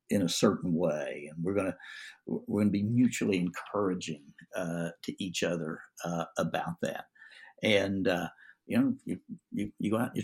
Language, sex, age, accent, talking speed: English, male, 60-79, American, 180 wpm